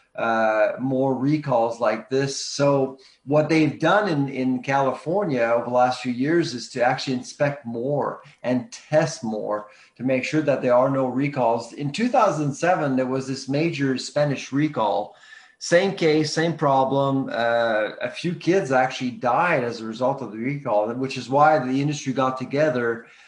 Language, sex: English, male